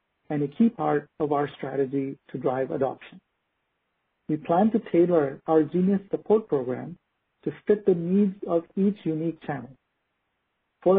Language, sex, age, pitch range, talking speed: English, male, 50-69, 145-185 Hz, 145 wpm